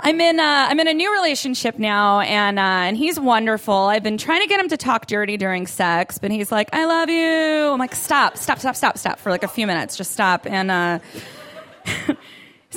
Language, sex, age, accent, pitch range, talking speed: English, female, 20-39, American, 210-330 Hz, 225 wpm